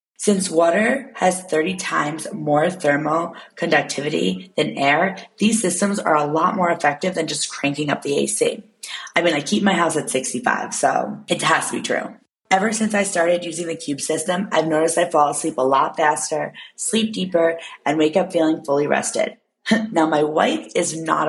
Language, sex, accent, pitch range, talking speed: English, female, American, 155-205 Hz, 185 wpm